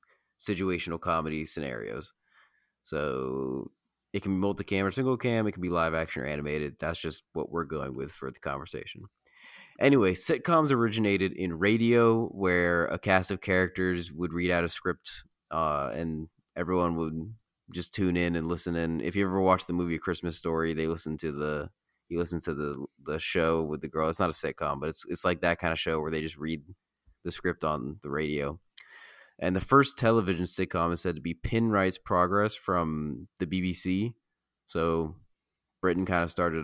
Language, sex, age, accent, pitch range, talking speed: English, male, 30-49, American, 80-95 Hz, 185 wpm